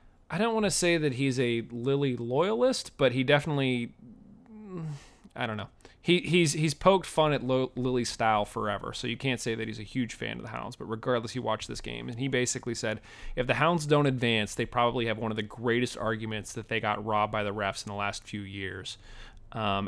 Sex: male